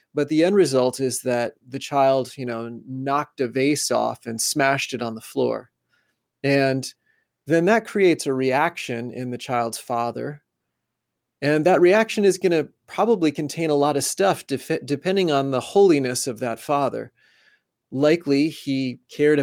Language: English